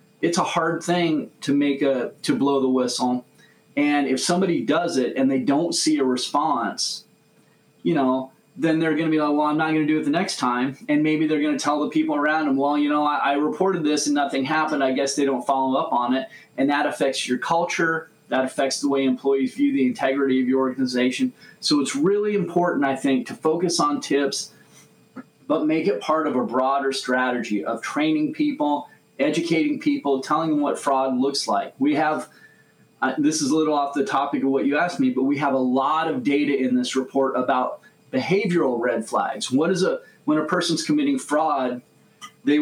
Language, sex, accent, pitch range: English, male, American, 130-160 Hz